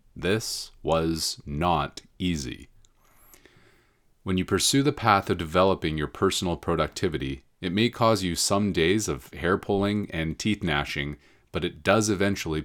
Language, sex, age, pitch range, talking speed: English, male, 30-49, 80-110 Hz, 140 wpm